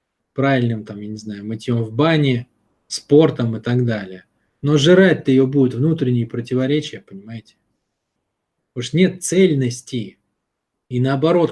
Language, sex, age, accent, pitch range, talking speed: Russian, male, 20-39, native, 115-150 Hz, 130 wpm